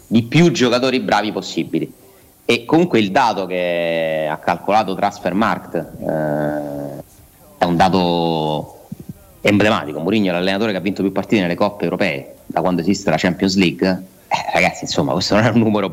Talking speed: 160 wpm